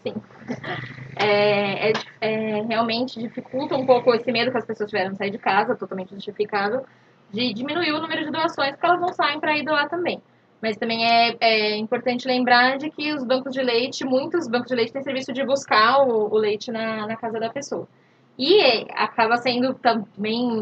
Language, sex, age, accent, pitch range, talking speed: Portuguese, female, 10-29, Brazilian, 210-265 Hz, 185 wpm